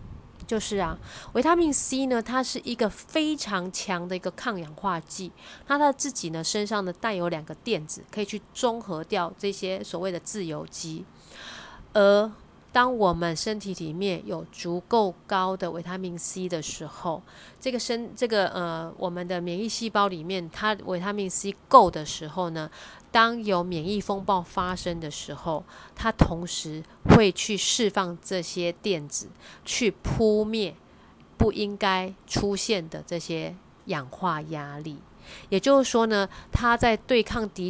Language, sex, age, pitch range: Chinese, female, 30-49, 165-210 Hz